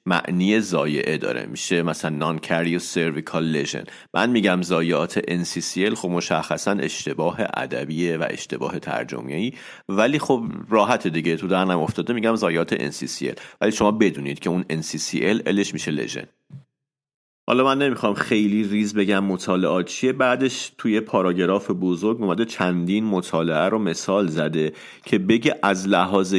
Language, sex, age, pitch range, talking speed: Persian, male, 40-59, 85-105 Hz, 140 wpm